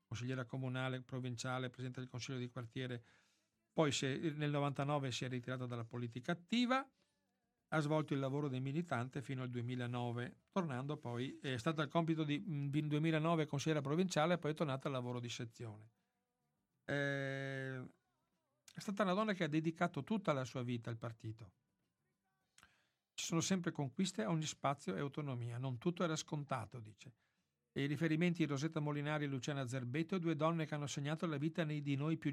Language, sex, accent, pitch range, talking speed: Italian, male, native, 130-165 Hz, 170 wpm